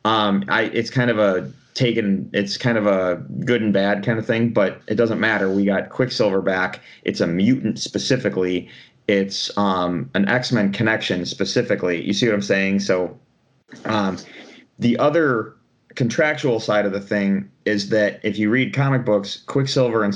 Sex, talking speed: male, 175 wpm